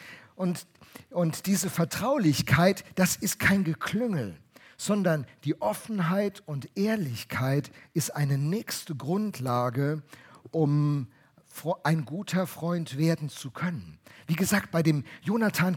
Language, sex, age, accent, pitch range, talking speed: German, male, 50-69, German, 145-185 Hz, 110 wpm